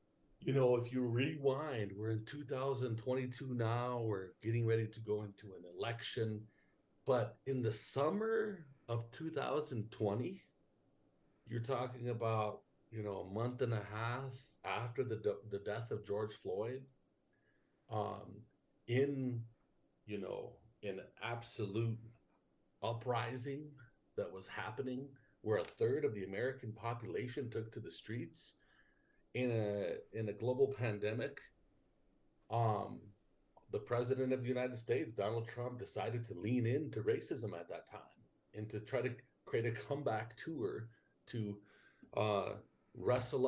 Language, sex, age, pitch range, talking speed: English, male, 50-69, 110-130 Hz, 135 wpm